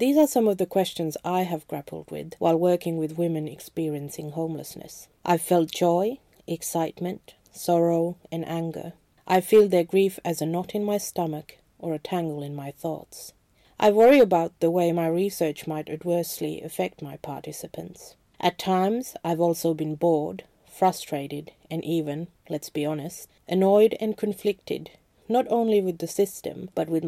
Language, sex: English, female